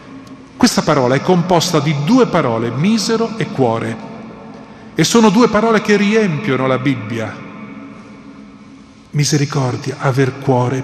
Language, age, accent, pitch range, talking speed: Italian, 40-59, native, 140-195 Hz, 115 wpm